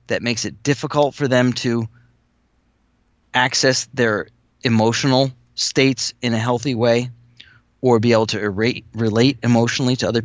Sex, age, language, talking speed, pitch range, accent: male, 30-49, English, 135 wpm, 110-130 Hz, American